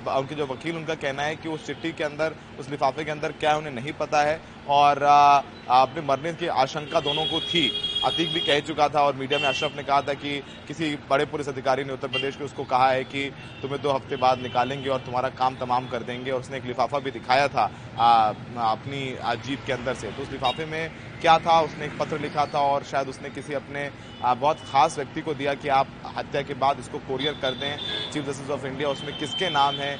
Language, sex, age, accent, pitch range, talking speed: Hindi, male, 30-49, native, 130-150 Hz, 230 wpm